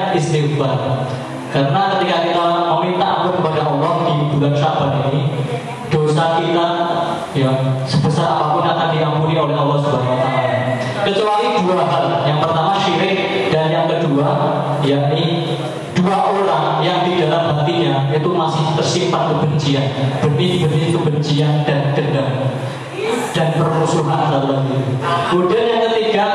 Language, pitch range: Indonesian, 140-165 Hz